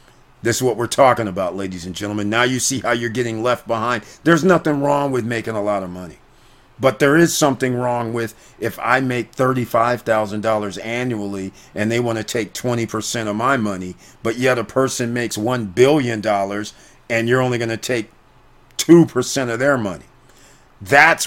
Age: 50-69